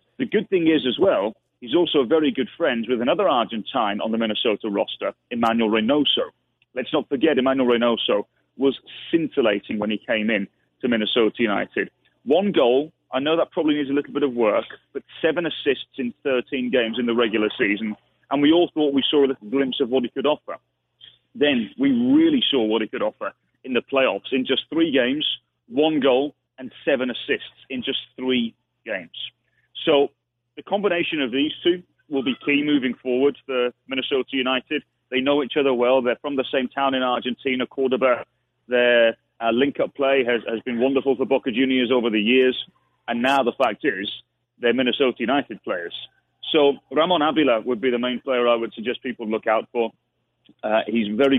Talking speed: 190 wpm